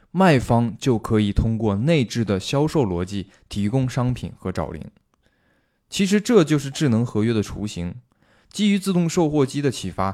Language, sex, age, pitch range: Chinese, male, 20-39, 100-140 Hz